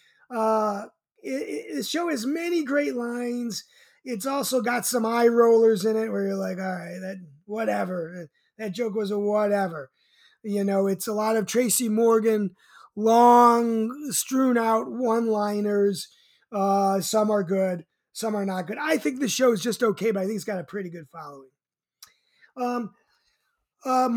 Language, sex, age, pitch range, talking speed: English, male, 20-39, 205-265 Hz, 165 wpm